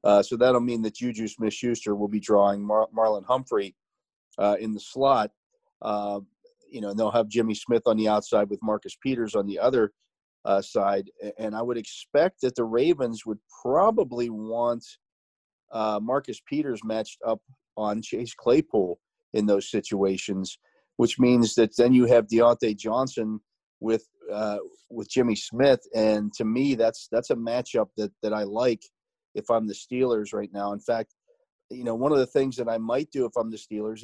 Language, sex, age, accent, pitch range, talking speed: English, male, 40-59, American, 105-125 Hz, 180 wpm